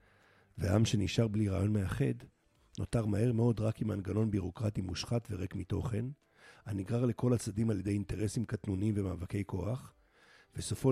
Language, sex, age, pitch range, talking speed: Hebrew, male, 50-69, 95-115 Hz, 135 wpm